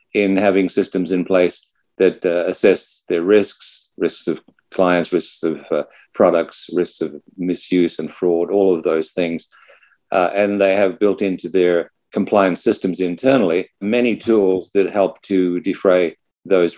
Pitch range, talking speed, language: 90-100 Hz, 155 wpm, English